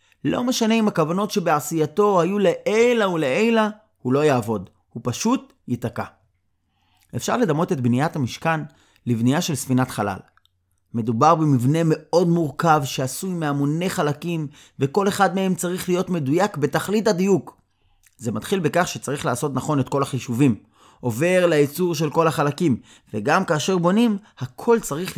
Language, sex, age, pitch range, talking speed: Hebrew, male, 30-49, 130-180 Hz, 135 wpm